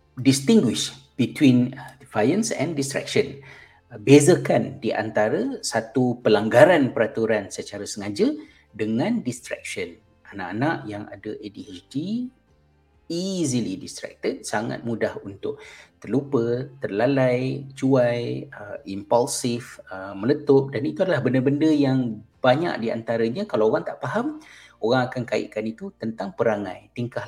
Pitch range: 115-145 Hz